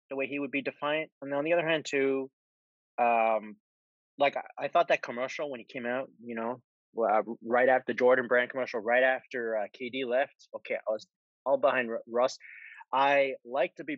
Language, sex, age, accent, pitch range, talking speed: English, male, 20-39, American, 120-150 Hz, 200 wpm